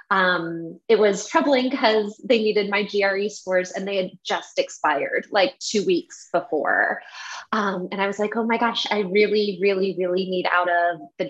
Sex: female